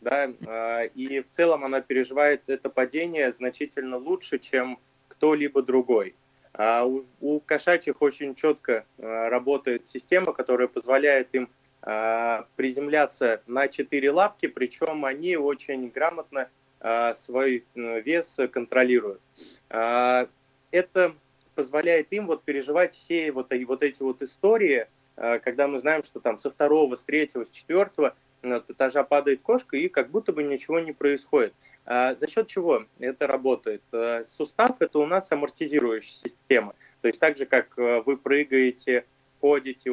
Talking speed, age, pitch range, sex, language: 120 wpm, 20-39, 125-150 Hz, male, Russian